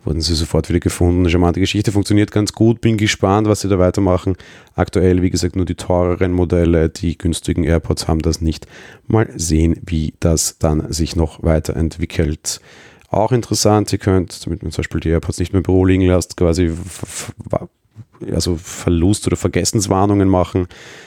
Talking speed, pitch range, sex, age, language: 170 wpm, 85-105 Hz, male, 30-49, German